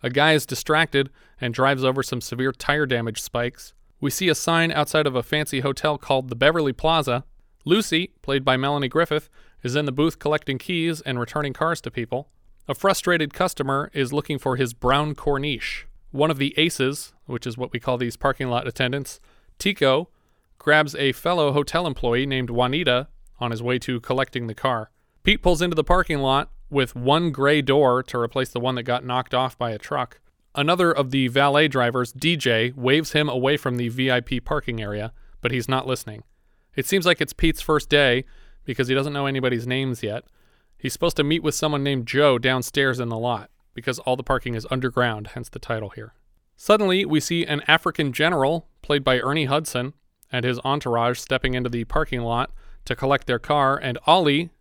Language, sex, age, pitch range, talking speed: English, male, 30-49, 125-150 Hz, 195 wpm